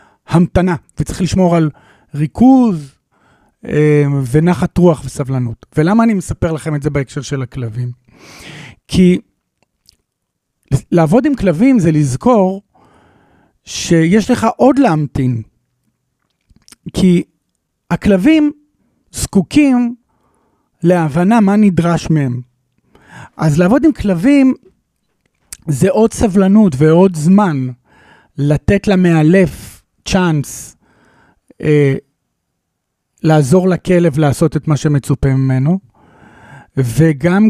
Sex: male